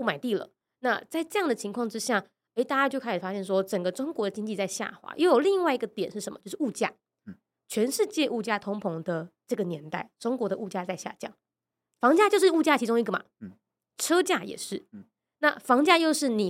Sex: female